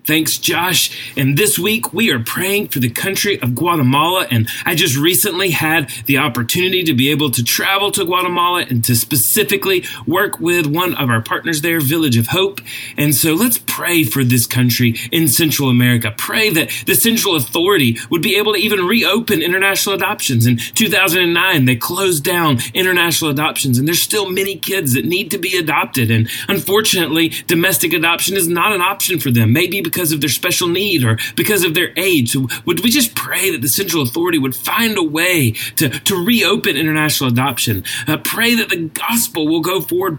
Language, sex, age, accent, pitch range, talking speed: English, male, 30-49, American, 130-190 Hz, 190 wpm